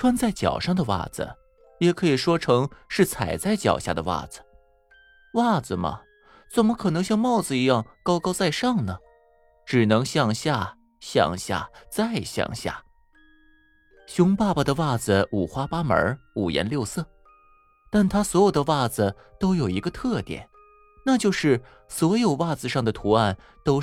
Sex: male